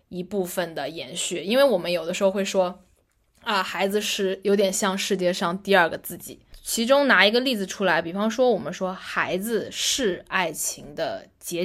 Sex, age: female, 10-29